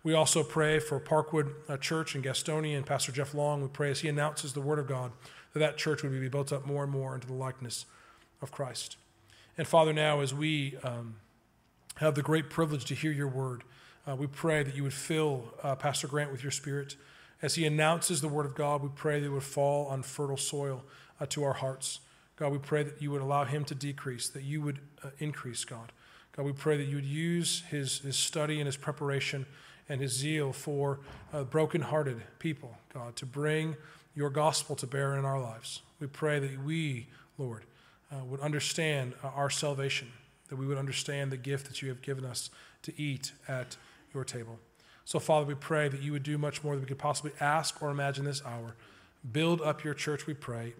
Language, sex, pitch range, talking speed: English, male, 130-150 Hz, 215 wpm